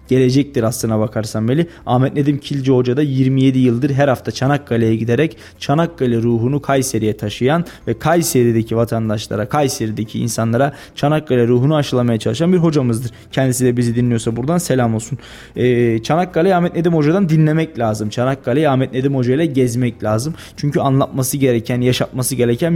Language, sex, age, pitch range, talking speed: Turkish, male, 20-39, 115-145 Hz, 145 wpm